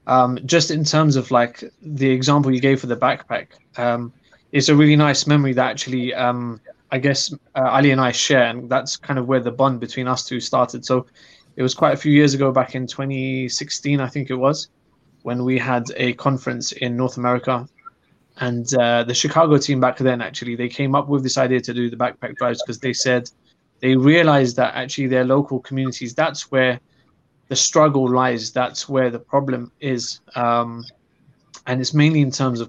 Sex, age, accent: male, 20-39, British